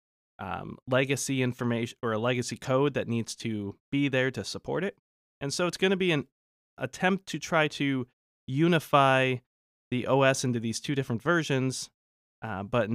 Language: English